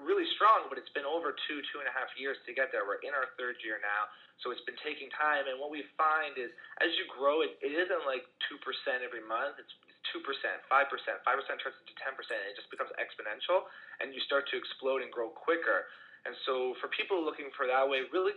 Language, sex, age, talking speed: English, male, 30-49, 230 wpm